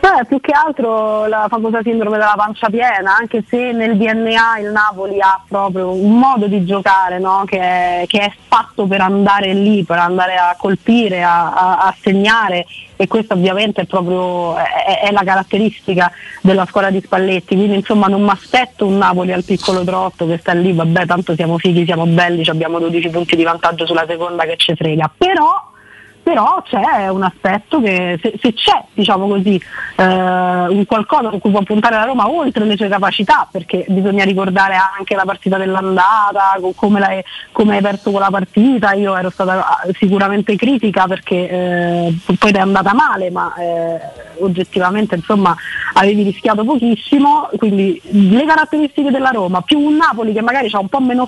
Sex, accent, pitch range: female, native, 185-220 Hz